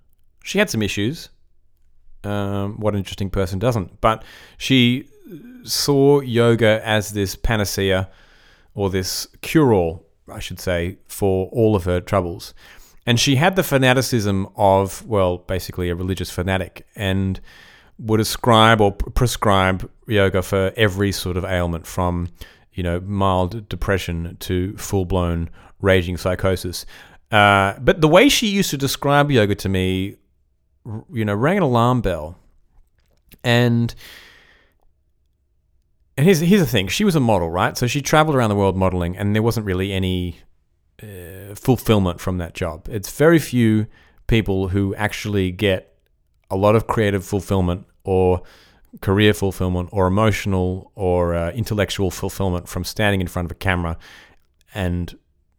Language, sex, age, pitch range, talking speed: English, male, 30-49, 90-110 Hz, 145 wpm